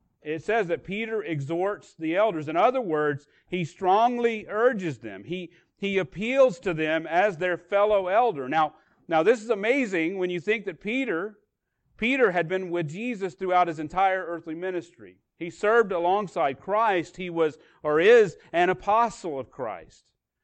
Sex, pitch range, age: male, 150-205 Hz, 40-59